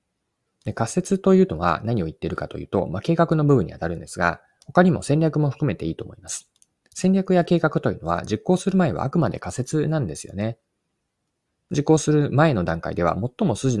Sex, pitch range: male, 90-150 Hz